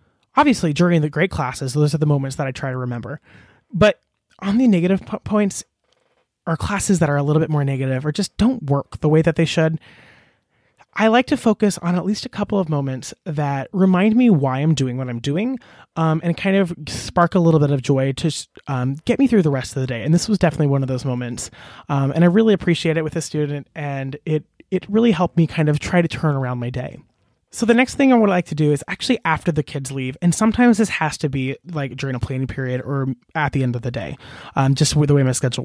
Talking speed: 250 wpm